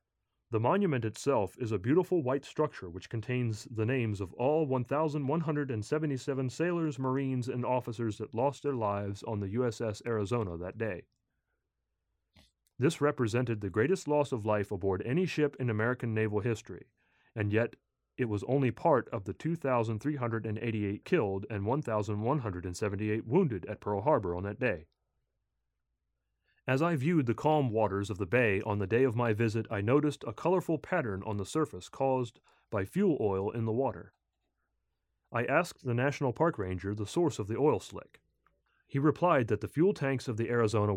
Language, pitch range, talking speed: English, 105-140 Hz, 165 wpm